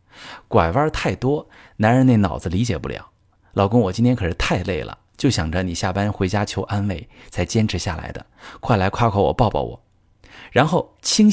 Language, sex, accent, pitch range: Chinese, male, native, 90-115 Hz